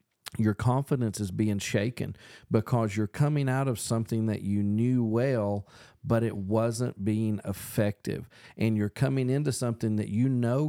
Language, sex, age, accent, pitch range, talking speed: English, male, 40-59, American, 105-125 Hz, 155 wpm